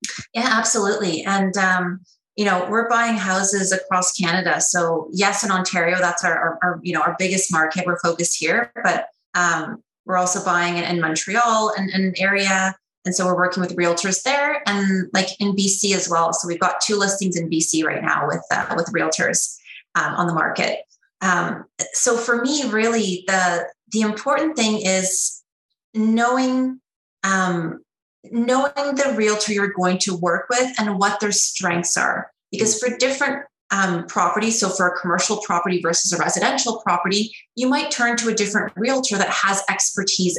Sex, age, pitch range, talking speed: female, 30-49, 180-215 Hz, 175 wpm